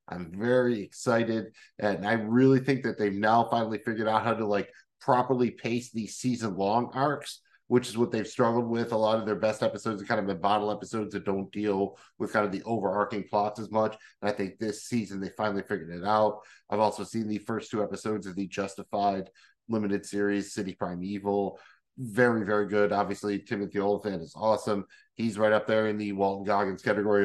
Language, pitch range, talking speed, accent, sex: English, 100-110 Hz, 200 wpm, American, male